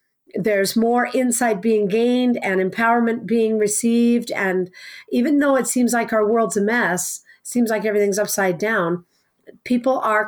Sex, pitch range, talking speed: female, 195-245 Hz, 150 wpm